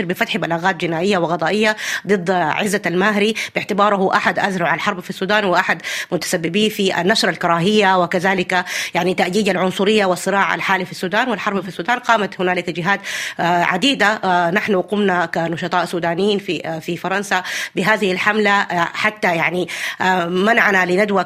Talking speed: 130 wpm